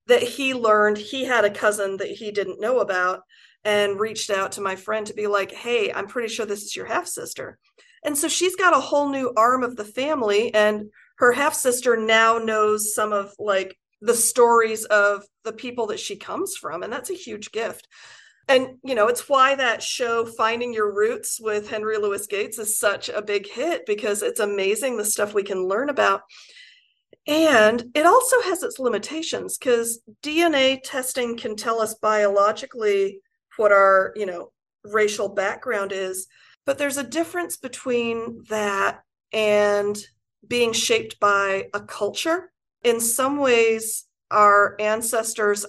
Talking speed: 170 wpm